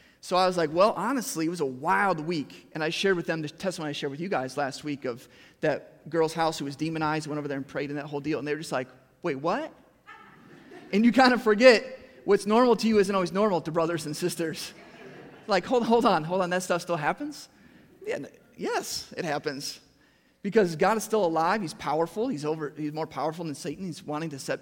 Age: 30-49